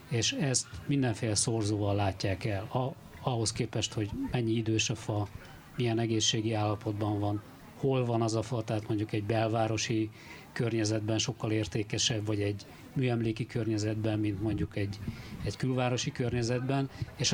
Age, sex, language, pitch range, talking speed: 50-69, male, Hungarian, 105-125 Hz, 140 wpm